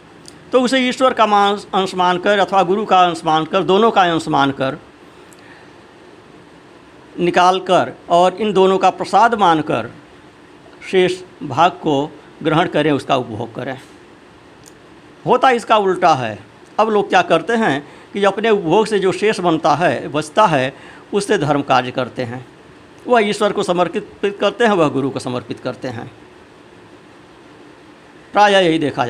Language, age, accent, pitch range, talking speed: Hindi, 50-69, native, 150-205 Hz, 150 wpm